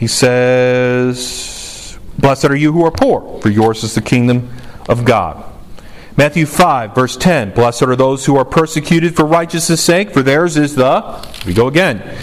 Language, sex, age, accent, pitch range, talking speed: English, male, 40-59, American, 120-155 Hz, 170 wpm